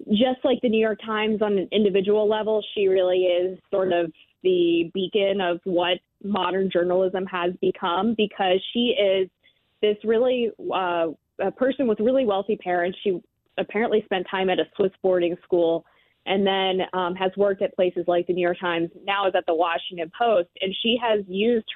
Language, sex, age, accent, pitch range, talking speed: English, female, 20-39, American, 180-215 Hz, 180 wpm